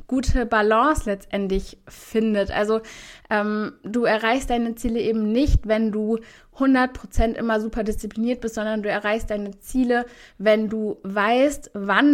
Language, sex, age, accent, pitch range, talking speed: German, female, 20-39, German, 210-245 Hz, 140 wpm